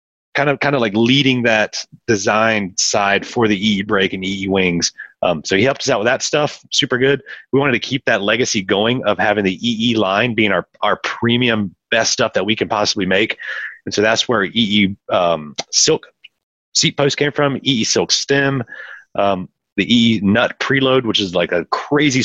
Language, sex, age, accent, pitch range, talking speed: English, male, 30-49, American, 100-130 Hz, 200 wpm